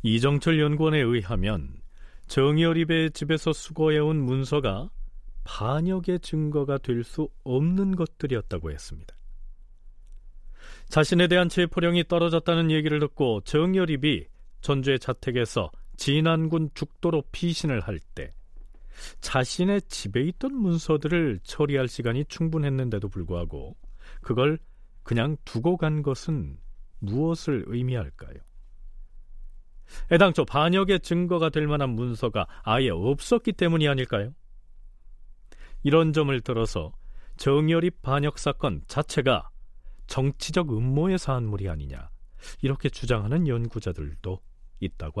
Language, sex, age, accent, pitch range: Korean, male, 40-59, native, 105-160 Hz